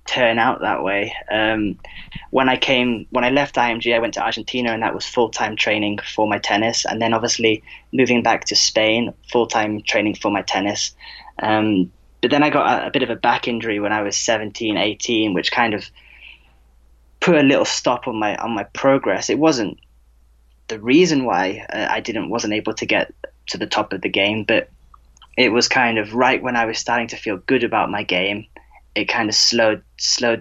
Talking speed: 205 wpm